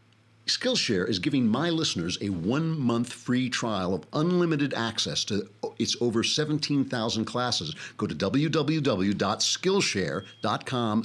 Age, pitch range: 50-69, 95-140 Hz